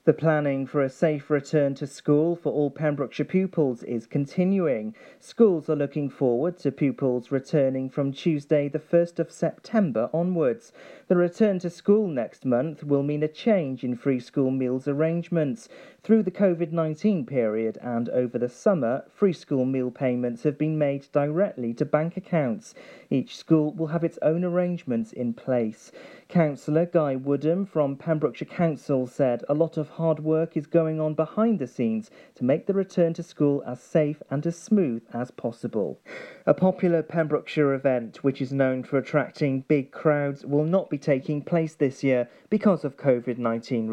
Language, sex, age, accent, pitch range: Japanese, male, 40-59, British, 130-165 Hz